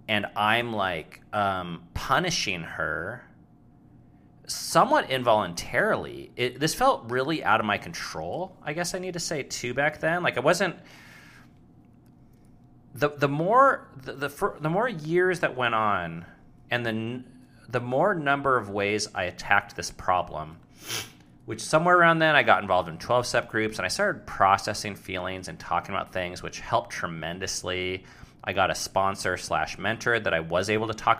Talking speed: 165 wpm